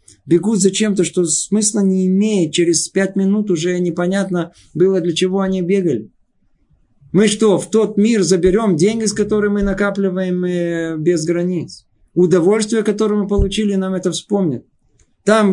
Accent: native